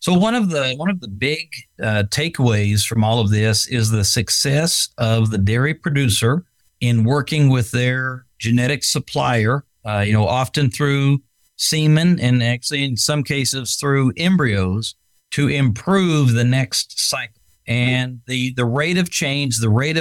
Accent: American